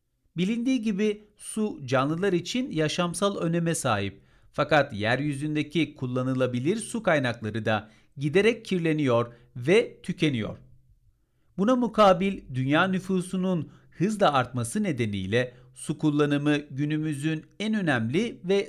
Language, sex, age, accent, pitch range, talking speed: Turkish, male, 50-69, native, 125-185 Hz, 100 wpm